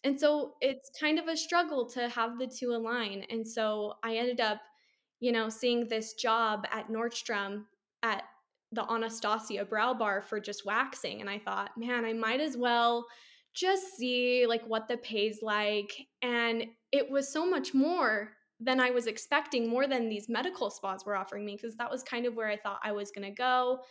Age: 10-29